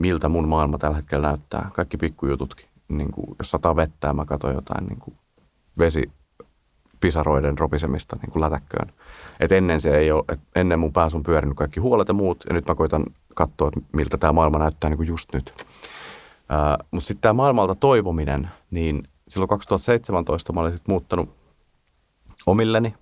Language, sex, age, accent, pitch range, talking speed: Finnish, male, 30-49, native, 75-100 Hz, 165 wpm